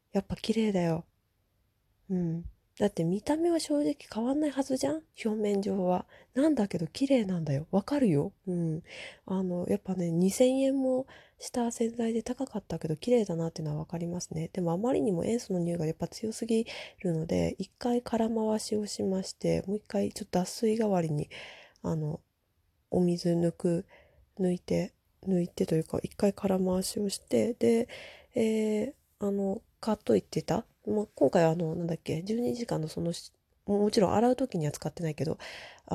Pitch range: 165-225 Hz